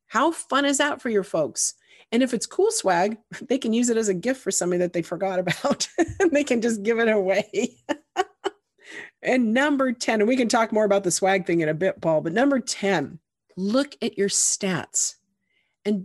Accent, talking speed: American, 205 wpm